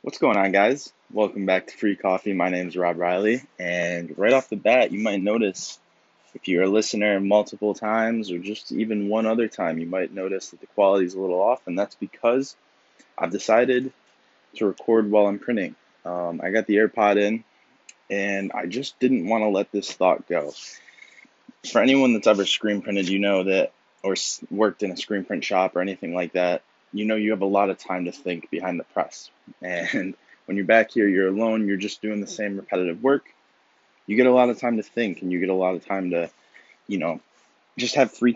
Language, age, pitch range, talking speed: English, 20-39, 95-110 Hz, 215 wpm